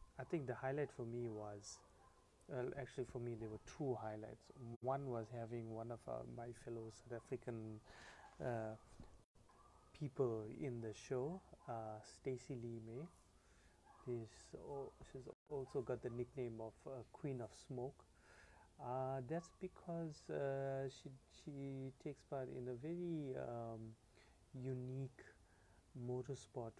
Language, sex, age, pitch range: English, male, 30-49, 110-130 Hz